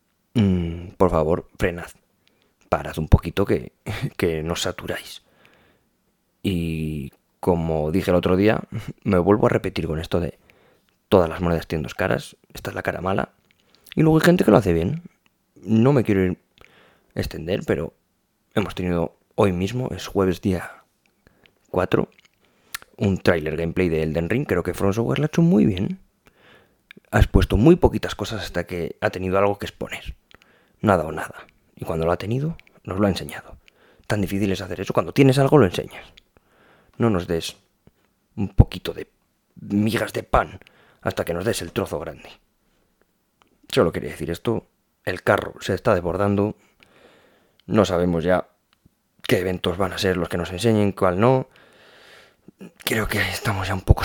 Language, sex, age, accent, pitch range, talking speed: Spanish, male, 20-39, Spanish, 85-110 Hz, 165 wpm